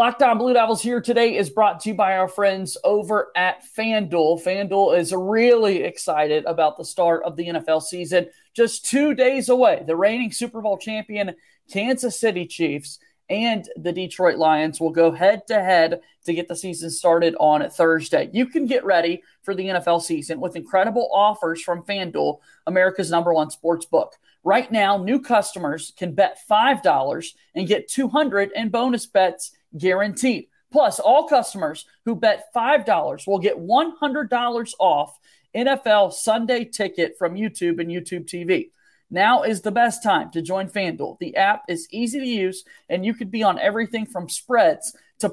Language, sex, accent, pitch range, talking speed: English, male, American, 175-235 Hz, 170 wpm